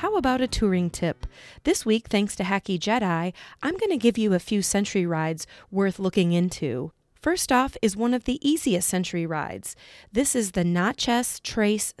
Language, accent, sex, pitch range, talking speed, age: English, American, female, 180-235 Hz, 185 wpm, 30-49